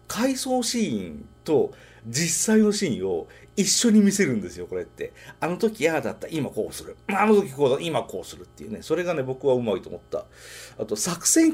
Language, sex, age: Japanese, male, 40-59